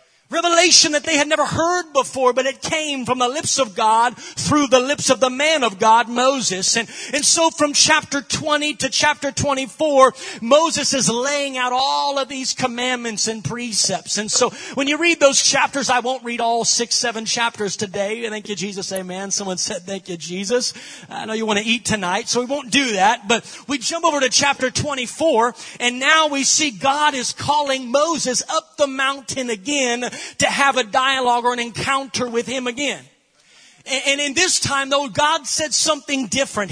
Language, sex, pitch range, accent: English, male, 235-300 Hz, American